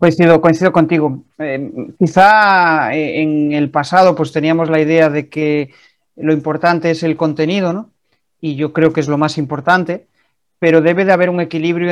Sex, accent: male, Spanish